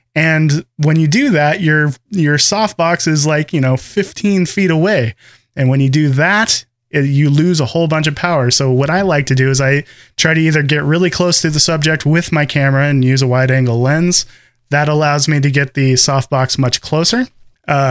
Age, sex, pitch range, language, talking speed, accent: 20-39, male, 135-165 Hz, English, 210 wpm, American